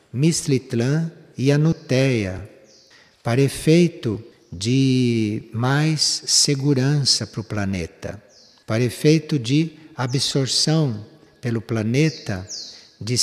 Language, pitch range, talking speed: Portuguese, 110-145 Hz, 80 wpm